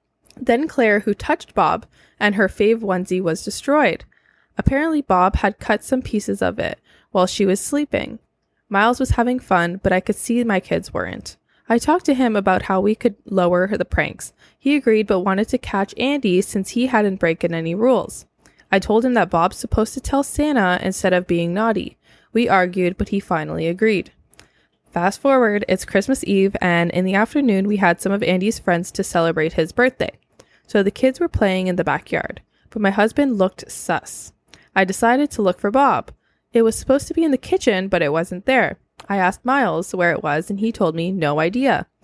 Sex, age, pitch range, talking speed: female, 10-29, 185-240 Hz, 200 wpm